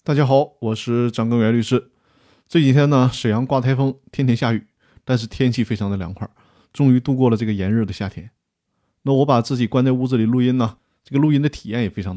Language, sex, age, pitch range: Chinese, male, 20-39, 110-155 Hz